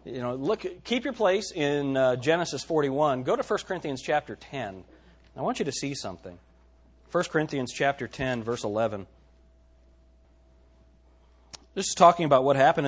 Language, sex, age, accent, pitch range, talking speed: English, male, 40-59, American, 100-165 Hz, 160 wpm